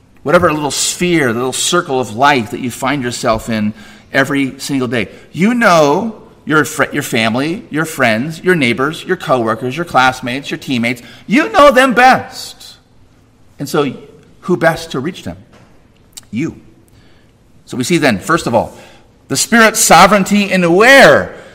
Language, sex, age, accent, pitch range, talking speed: English, male, 40-59, American, 120-185 Hz, 155 wpm